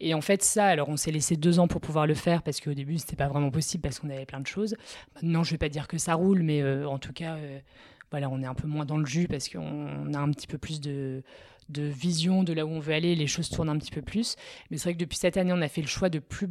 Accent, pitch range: French, 150-185 Hz